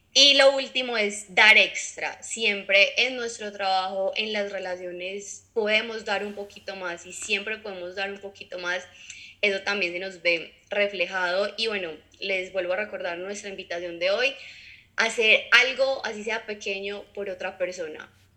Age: 20-39